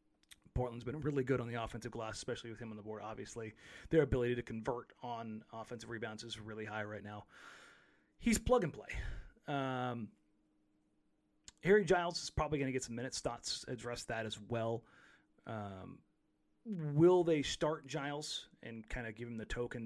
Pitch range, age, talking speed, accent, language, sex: 110-135 Hz, 30-49, 175 wpm, American, English, male